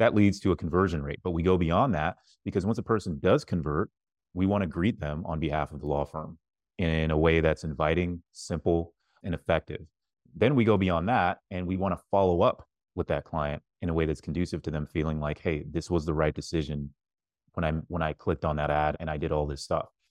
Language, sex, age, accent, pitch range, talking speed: English, male, 30-49, American, 80-90 Hz, 235 wpm